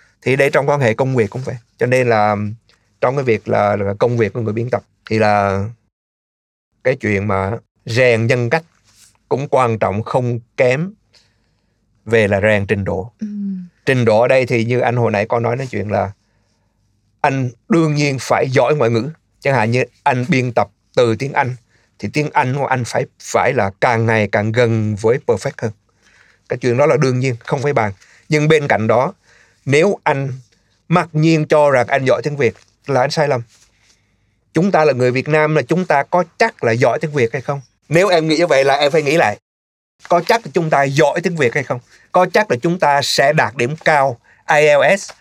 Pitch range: 110-145 Hz